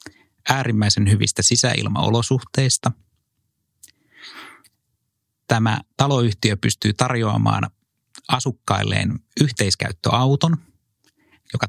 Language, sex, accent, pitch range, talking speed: Finnish, male, native, 105-125 Hz, 50 wpm